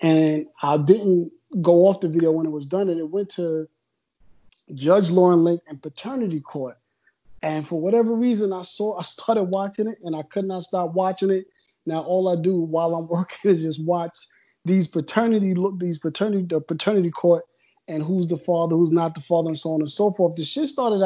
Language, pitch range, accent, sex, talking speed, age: English, 160-190 Hz, American, male, 210 wpm, 30-49